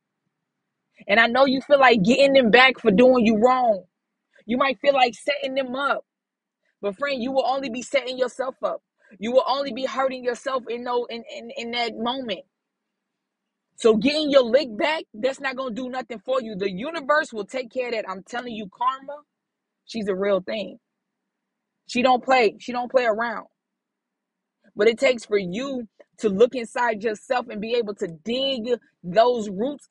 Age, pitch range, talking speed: 20-39, 230-275 Hz, 185 wpm